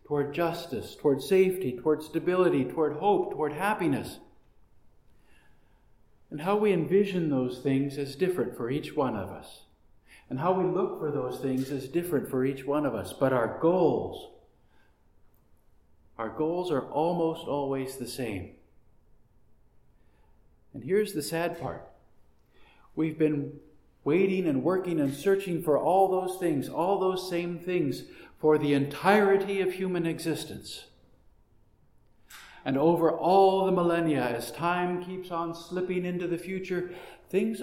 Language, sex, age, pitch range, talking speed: English, male, 50-69, 130-185 Hz, 140 wpm